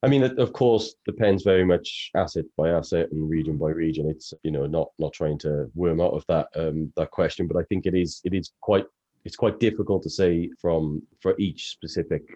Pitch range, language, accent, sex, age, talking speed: 75-90 Hz, English, British, male, 30-49, 220 wpm